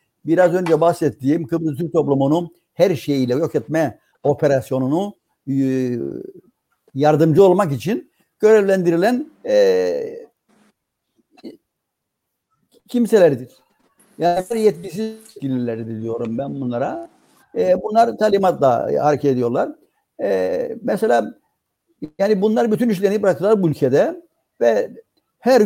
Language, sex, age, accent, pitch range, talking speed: Turkish, male, 60-79, native, 140-220 Hz, 90 wpm